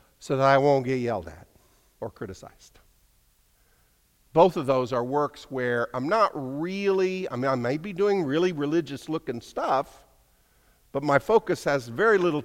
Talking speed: 165 wpm